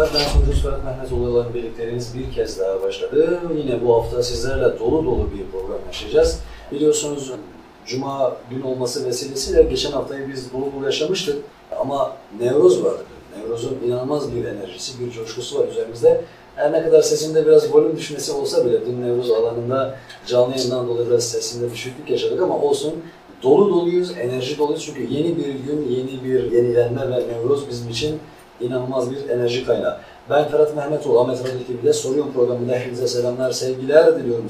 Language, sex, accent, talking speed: Turkish, male, native, 155 wpm